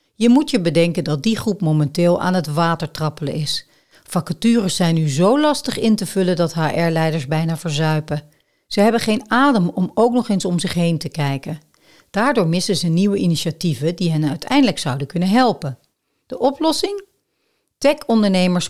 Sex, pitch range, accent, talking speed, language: female, 155-210 Hz, Dutch, 165 wpm, Dutch